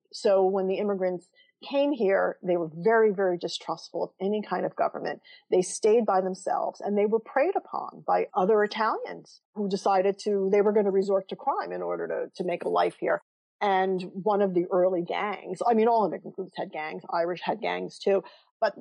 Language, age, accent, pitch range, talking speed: English, 40-59, American, 180-215 Hz, 205 wpm